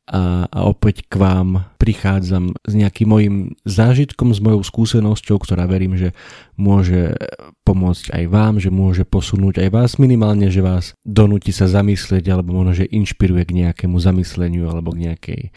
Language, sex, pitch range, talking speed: Slovak, male, 90-105 Hz, 155 wpm